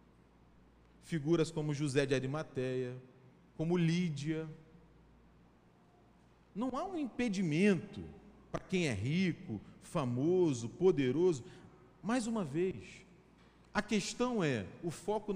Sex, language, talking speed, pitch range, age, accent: male, Portuguese, 100 wpm, 140-225 Hz, 40-59, Brazilian